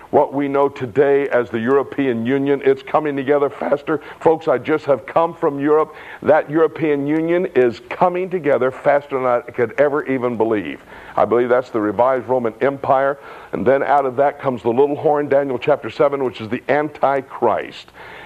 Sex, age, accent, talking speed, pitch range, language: male, 60-79, American, 180 wpm, 135-170 Hz, English